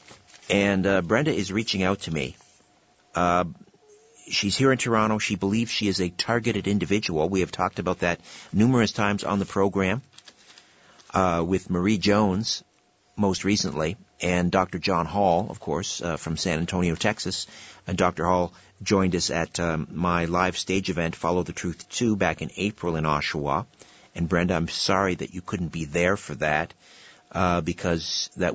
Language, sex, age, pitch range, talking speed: English, male, 50-69, 90-105 Hz, 170 wpm